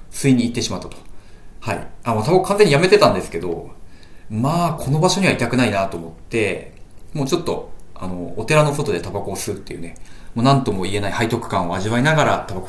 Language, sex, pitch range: Japanese, male, 90-140 Hz